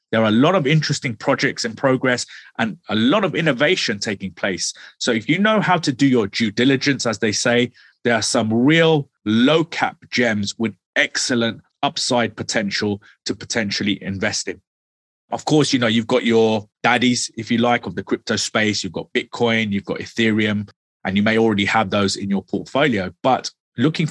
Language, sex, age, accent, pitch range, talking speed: English, male, 30-49, British, 100-125 Hz, 180 wpm